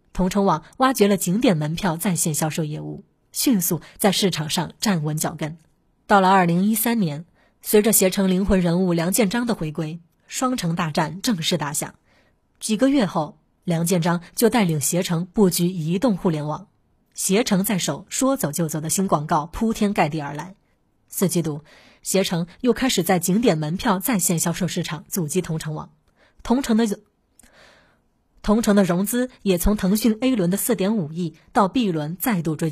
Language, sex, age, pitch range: Chinese, female, 20-39, 165-205 Hz